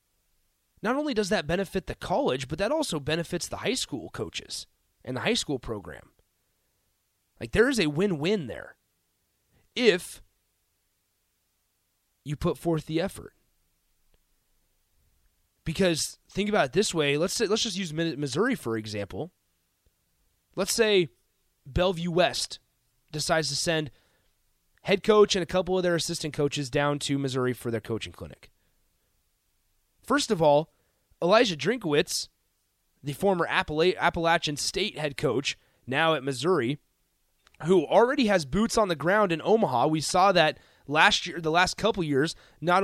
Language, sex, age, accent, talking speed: English, male, 30-49, American, 145 wpm